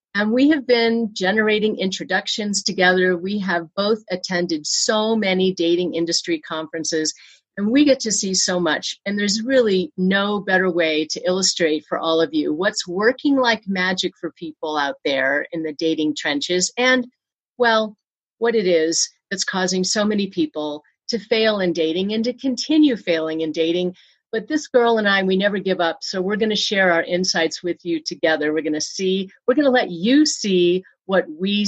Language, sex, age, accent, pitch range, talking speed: English, female, 50-69, American, 170-225 Hz, 185 wpm